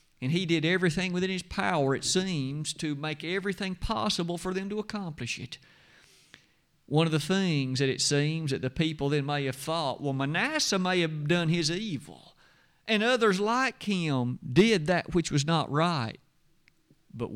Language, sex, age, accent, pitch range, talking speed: English, male, 50-69, American, 135-190 Hz, 175 wpm